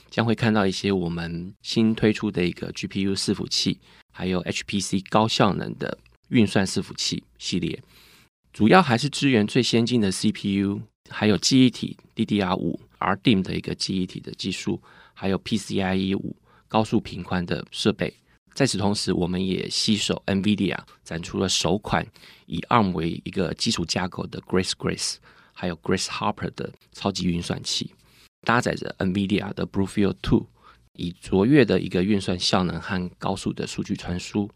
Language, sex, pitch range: Chinese, male, 95-110 Hz